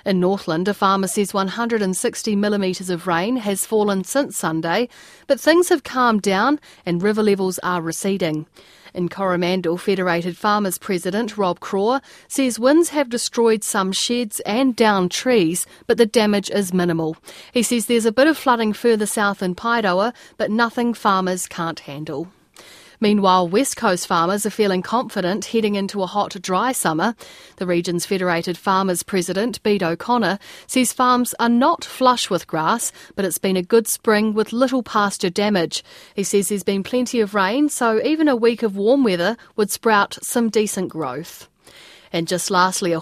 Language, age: English, 40-59